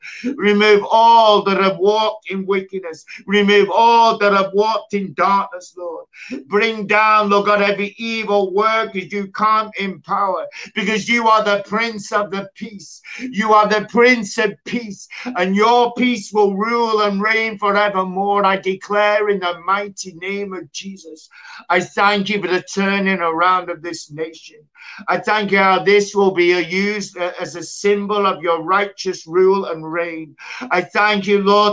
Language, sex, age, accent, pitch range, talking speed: English, male, 50-69, British, 175-210 Hz, 165 wpm